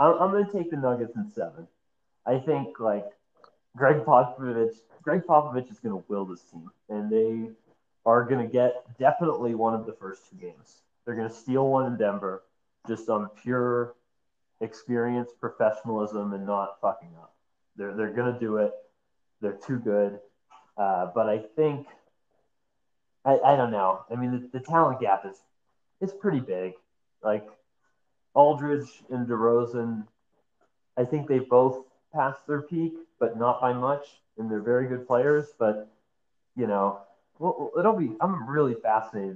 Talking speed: 160 wpm